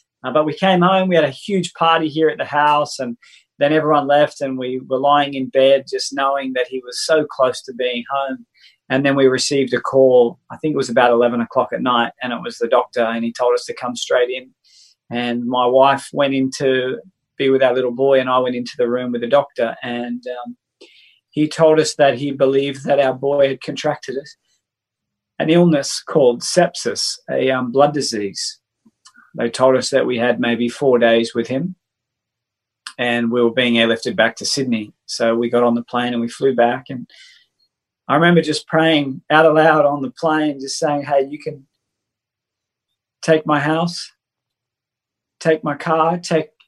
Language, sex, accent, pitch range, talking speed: English, male, Australian, 125-150 Hz, 200 wpm